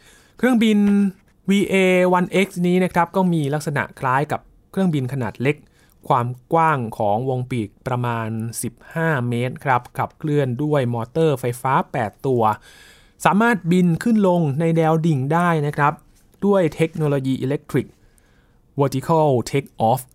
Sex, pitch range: male, 125-165 Hz